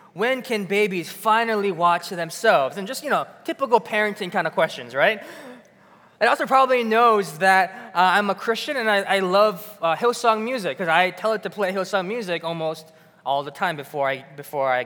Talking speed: 190 wpm